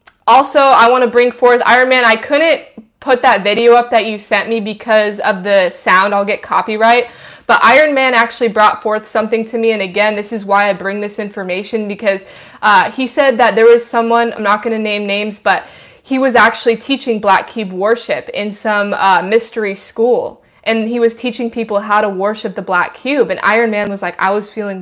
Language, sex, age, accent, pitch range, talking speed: English, female, 20-39, American, 205-240 Hz, 215 wpm